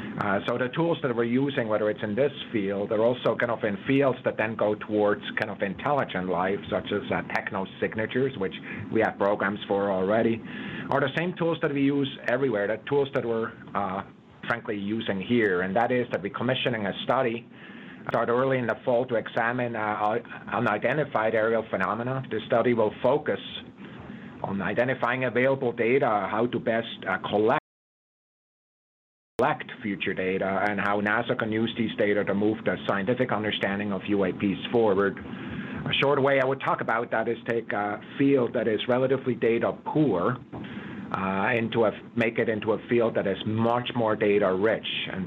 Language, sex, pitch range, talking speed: Swedish, male, 100-125 Hz, 180 wpm